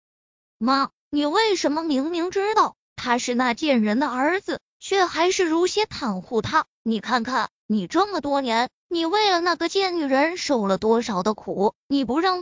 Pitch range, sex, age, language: 235-340 Hz, female, 20-39, Chinese